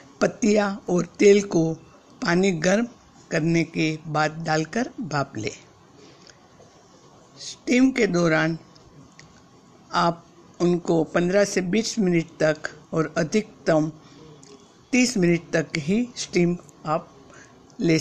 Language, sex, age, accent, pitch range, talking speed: Hindi, female, 60-79, native, 155-190 Hz, 105 wpm